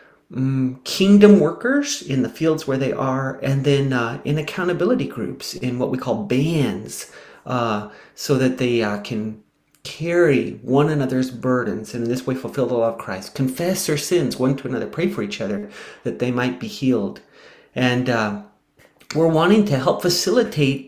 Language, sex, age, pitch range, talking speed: English, male, 40-59, 120-150 Hz, 170 wpm